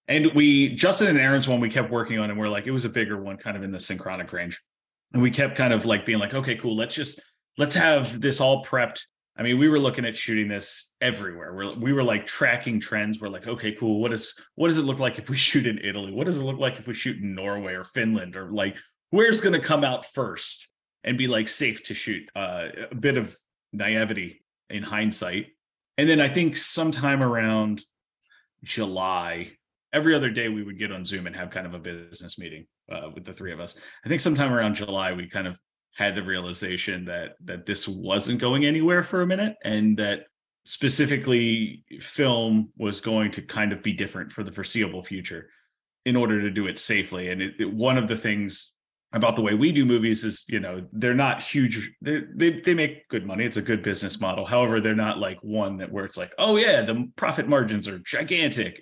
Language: English